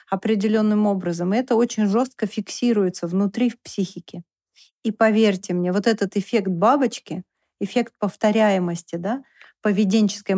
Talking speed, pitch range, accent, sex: 120 wpm, 185-225 Hz, native, female